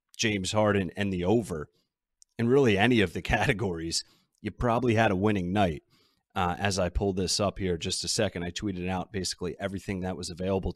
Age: 30-49